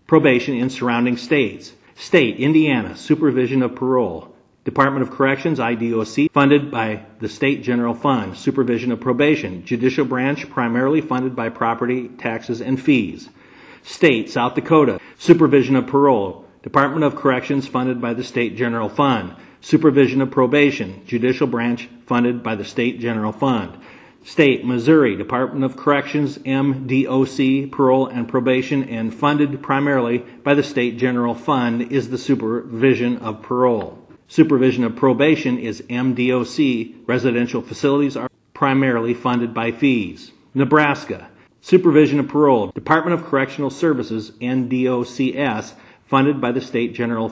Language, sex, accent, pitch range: English, male, American, 120-140 Hz